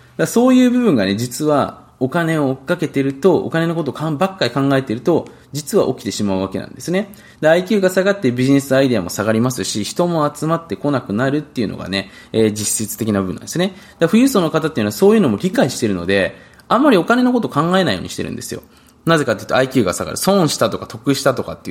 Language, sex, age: Japanese, male, 20-39